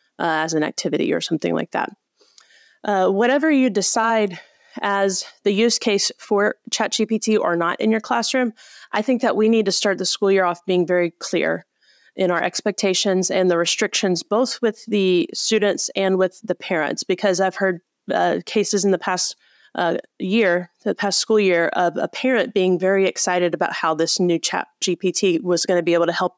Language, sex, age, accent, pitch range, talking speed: English, female, 30-49, American, 175-210 Hz, 190 wpm